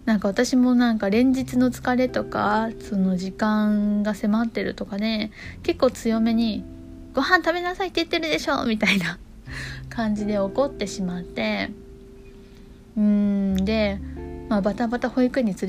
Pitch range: 195-255 Hz